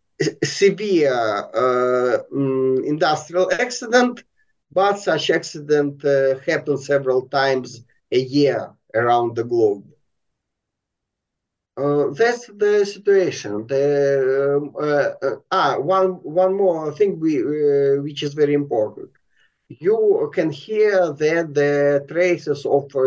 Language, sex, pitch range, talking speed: English, male, 135-175 Hz, 110 wpm